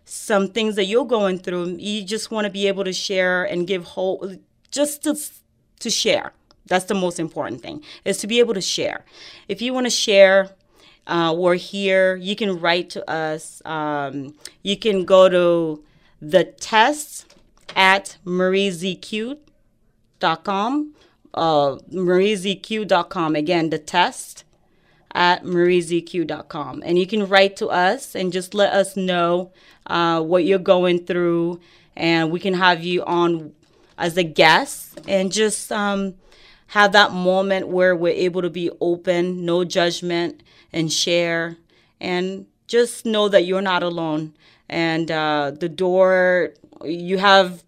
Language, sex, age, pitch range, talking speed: English, female, 30-49, 165-195 Hz, 145 wpm